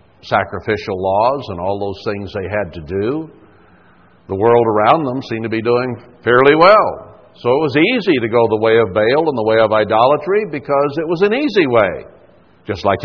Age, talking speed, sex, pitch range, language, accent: 60-79, 200 wpm, male, 100-145 Hz, English, American